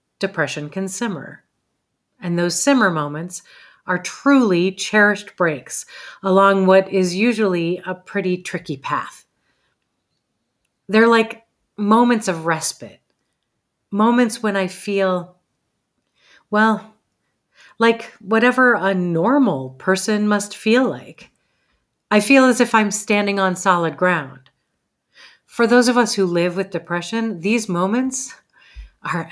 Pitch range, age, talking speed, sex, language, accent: 170-220 Hz, 40-59, 115 wpm, female, English, American